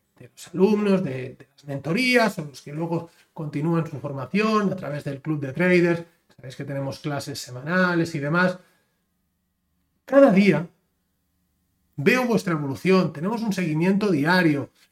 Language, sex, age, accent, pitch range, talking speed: Spanish, male, 30-49, Spanish, 155-205 Hz, 145 wpm